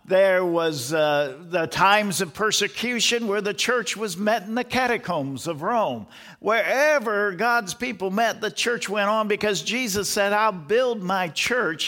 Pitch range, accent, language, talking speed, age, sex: 135-200 Hz, American, English, 160 wpm, 50-69, male